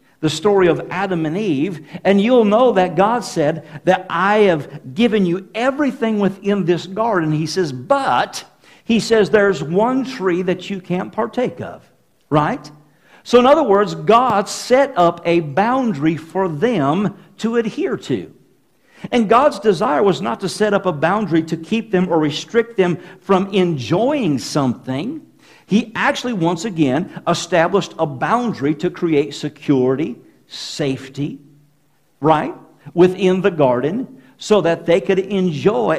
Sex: male